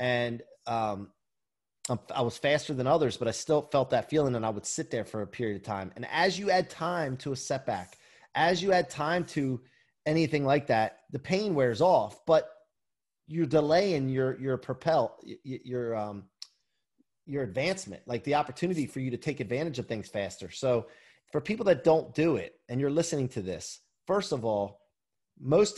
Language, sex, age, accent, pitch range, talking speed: English, male, 30-49, American, 125-165 Hz, 190 wpm